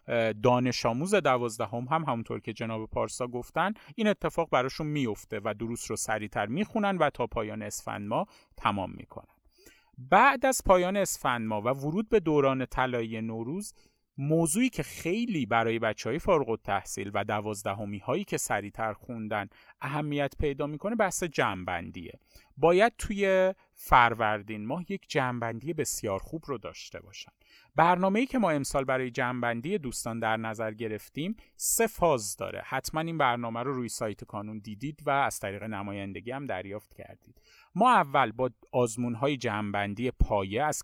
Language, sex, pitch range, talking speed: Persian, male, 110-165 Hz, 150 wpm